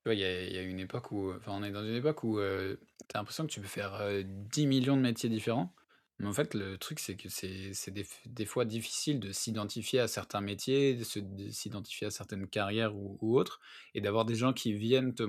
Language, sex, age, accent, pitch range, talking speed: French, male, 20-39, French, 100-115 Hz, 230 wpm